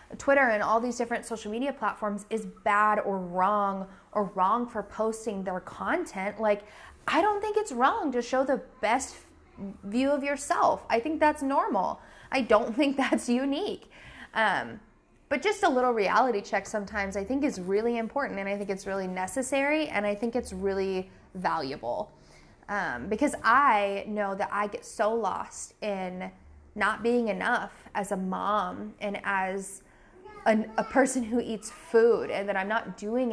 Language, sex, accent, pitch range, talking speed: English, female, American, 195-240 Hz, 165 wpm